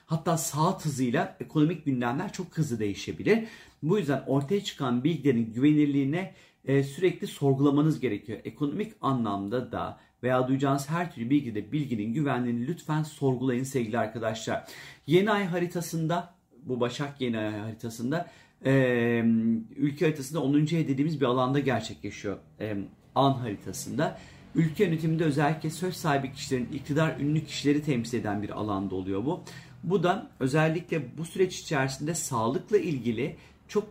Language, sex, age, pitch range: Turkish, male, 40-59, 125-165 Hz